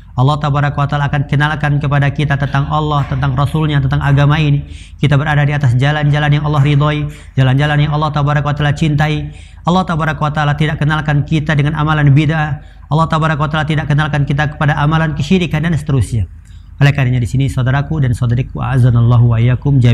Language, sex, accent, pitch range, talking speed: Indonesian, male, native, 115-145 Hz, 155 wpm